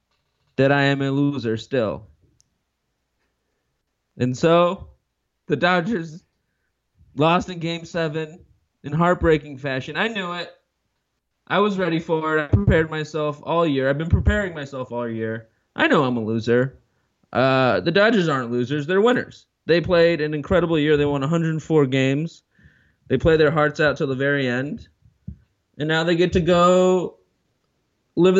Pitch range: 135-175 Hz